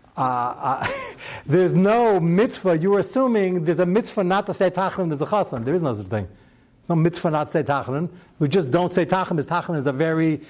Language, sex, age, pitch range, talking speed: English, male, 60-79, 145-205 Hz, 225 wpm